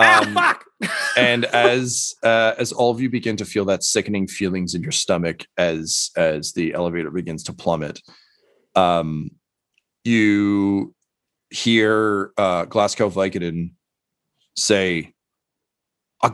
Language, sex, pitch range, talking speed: English, male, 90-115 Hz, 120 wpm